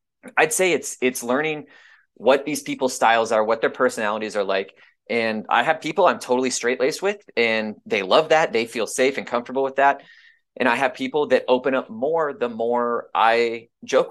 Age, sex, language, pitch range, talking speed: 20-39, male, English, 110-135 Hz, 200 wpm